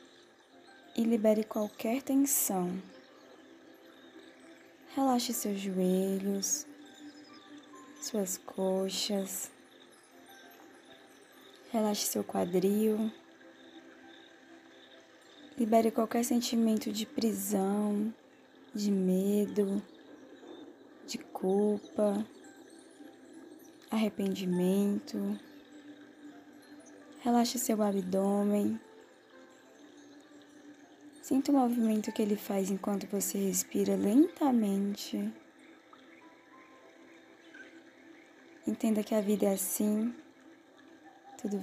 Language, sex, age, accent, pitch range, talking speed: Portuguese, female, 10-29, Brazilian, 200-295 Hz, 60 wpm